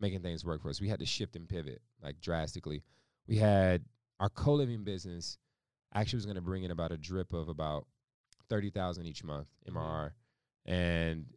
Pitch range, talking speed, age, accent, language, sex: 80-100 Hz, 180 wpm, 20-39, American, English, male